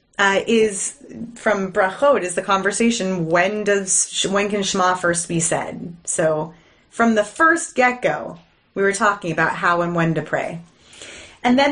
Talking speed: 160 wpm